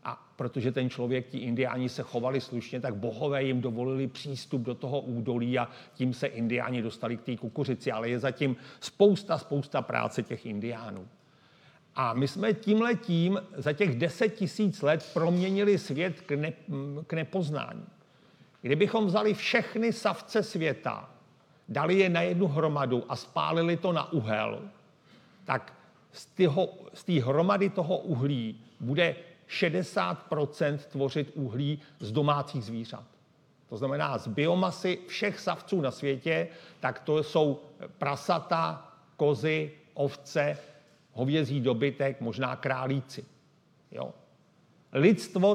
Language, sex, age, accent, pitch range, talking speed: Czech, male, 50-69, native, 130-175 Hz, 125 wpm